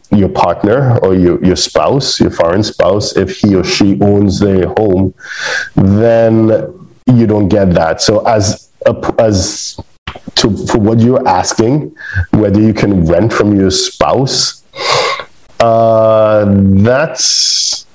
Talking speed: 130 wpm